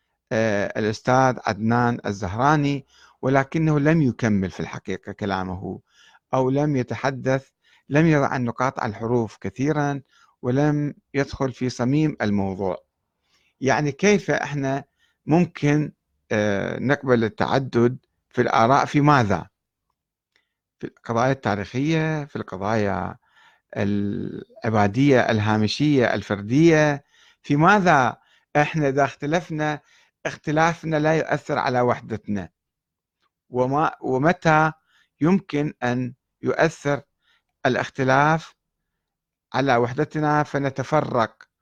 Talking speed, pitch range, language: 85 wpm, 115-150 Hz, Arabic